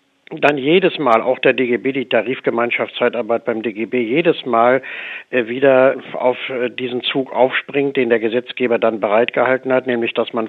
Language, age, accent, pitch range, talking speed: German, 60-79, German, 115-130 Hz, 150 wpm